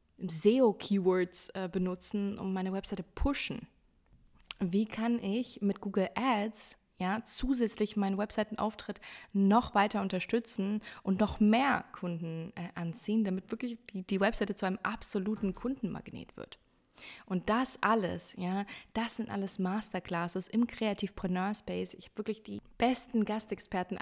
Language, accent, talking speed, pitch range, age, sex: German, German, 135 wpm, 185-215 Hz, 20-39, female